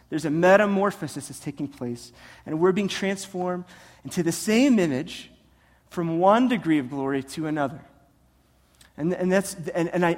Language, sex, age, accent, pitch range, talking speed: English, male, 30-49, American, 145-195 Hz, 160 wpm